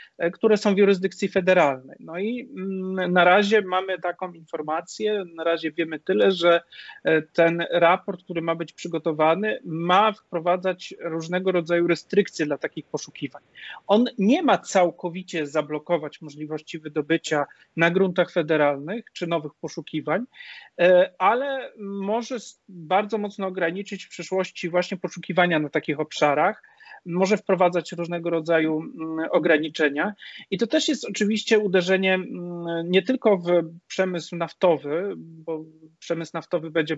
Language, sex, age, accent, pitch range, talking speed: Polish, male, 30-49, native, 160-195 Hz, 125 wpm